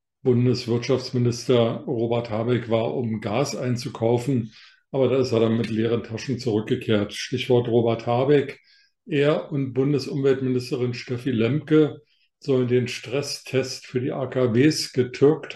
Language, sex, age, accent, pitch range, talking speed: German, male, 50-69, German, 115-130 Hz, 120 wpm